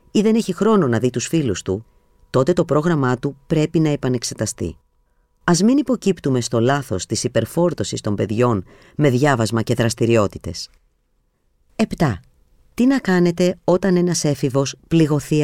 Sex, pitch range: female, 115-170 Hz